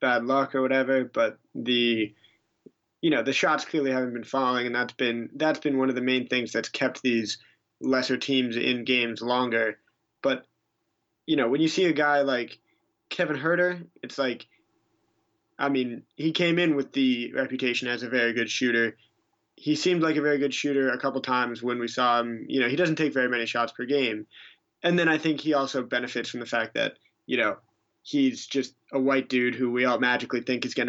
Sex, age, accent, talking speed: male, 20-39, American, 210 wpm